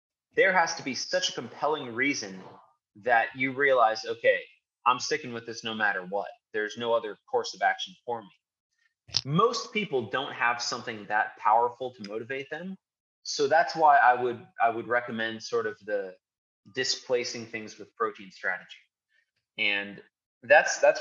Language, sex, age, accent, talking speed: English, male, 30-49, American, 160 wpm